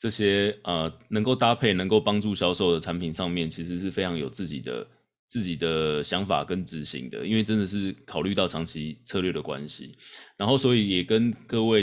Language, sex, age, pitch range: Chinese, male, 20-39, 90-115 Hz